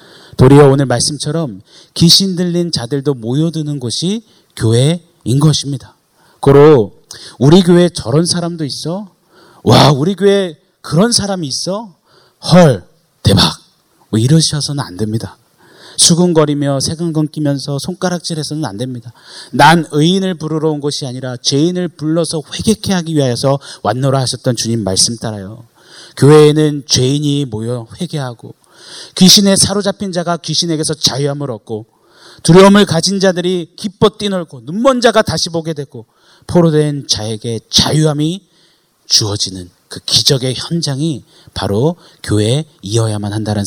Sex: male